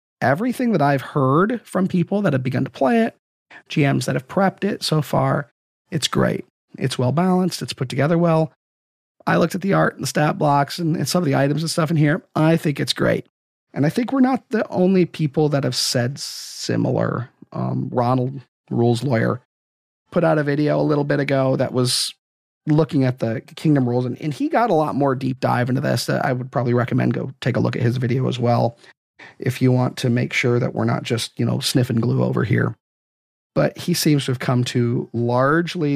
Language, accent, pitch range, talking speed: English, American, 120-155 Hz, 215 wpm